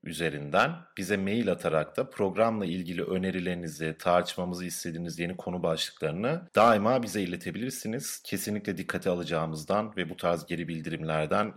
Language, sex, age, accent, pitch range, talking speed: Turkish, male, 40-59, native, 85-140 Hz, 125 wpm